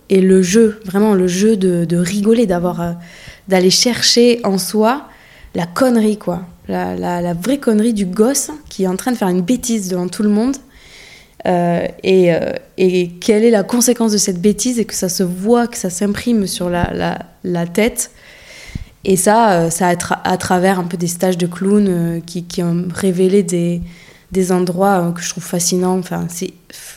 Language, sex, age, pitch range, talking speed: French, female, 20-39, 180-210 Hz, 190 wpm